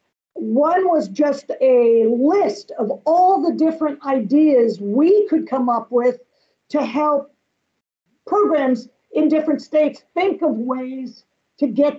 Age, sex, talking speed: 50-69, female, 130 wpm